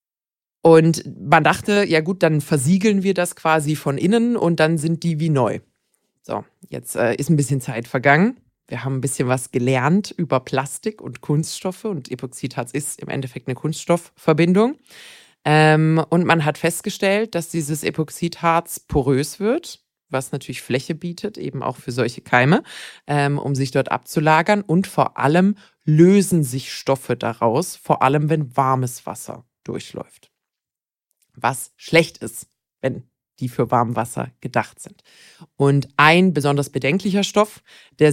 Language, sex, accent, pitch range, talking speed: German, female, German, 140-180 Hz, 150 wpm